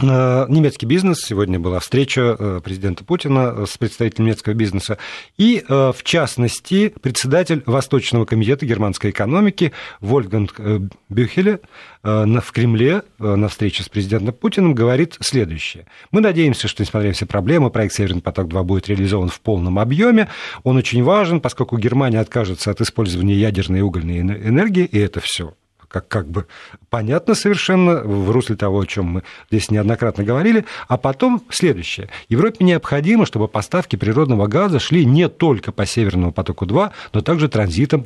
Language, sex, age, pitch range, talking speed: Russian, male, 40-59, 100-150 Hz, 145 wpm